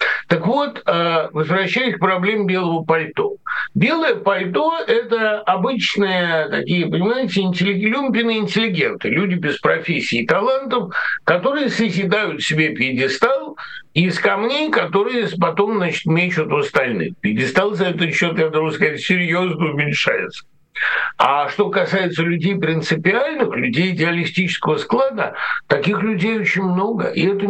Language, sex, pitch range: Russian, male, 165-220 Hz